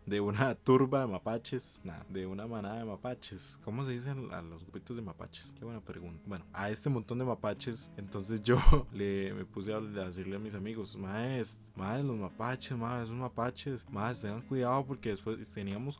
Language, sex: Spanish, male